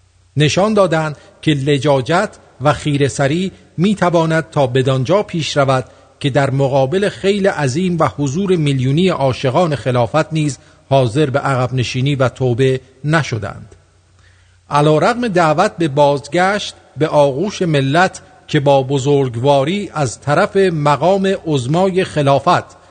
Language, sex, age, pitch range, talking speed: English, male, 50-69, 135-180 Hz, 120 wpm